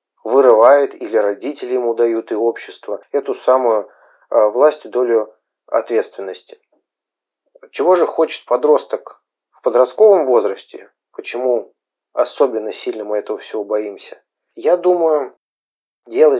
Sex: male